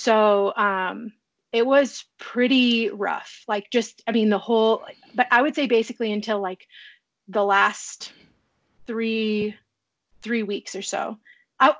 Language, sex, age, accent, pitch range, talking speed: English, female, 30-49, American, 205-250 Hz, 135 wpm